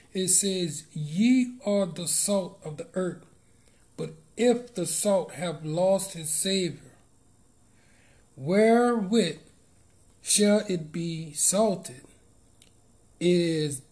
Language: English